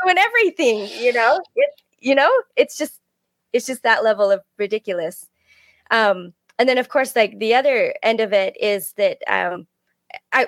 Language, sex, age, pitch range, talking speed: English, female, 20-39, 200-265 Hz, 170 wpm